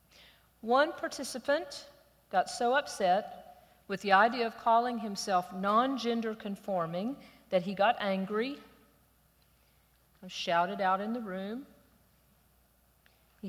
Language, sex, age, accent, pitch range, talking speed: English, female, 50-69, American, 175-220 Hz, 105 wpm